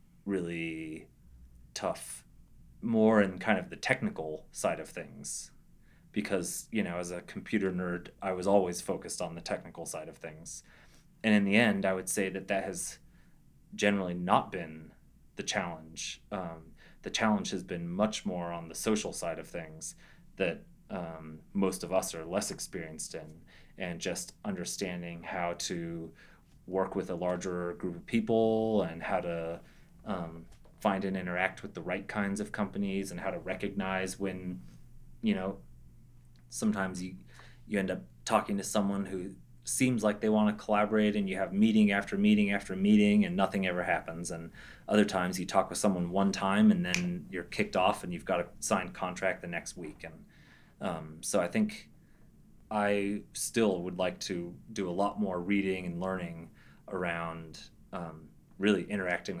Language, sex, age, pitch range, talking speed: English, male, 30-49, 85-105 Hz, 170 wpm